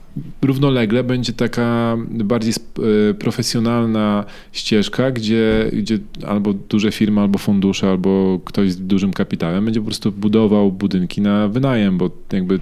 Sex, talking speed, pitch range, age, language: male, 130 wpm, 100-115 Hz, 20-39, Polish